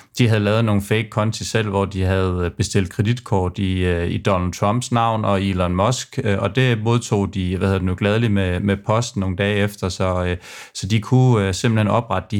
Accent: native